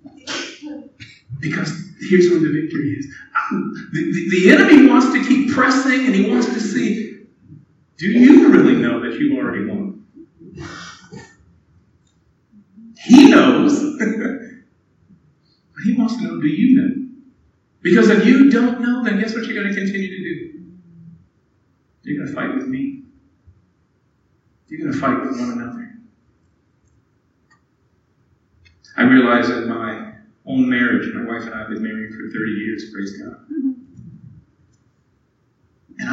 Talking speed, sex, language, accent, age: 135 wpm, male, English, American, 50-69